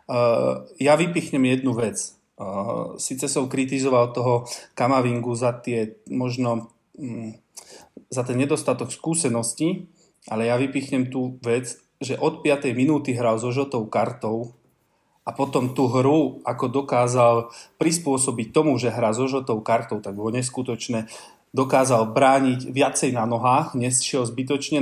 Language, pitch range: Slovak, 120-135 Hz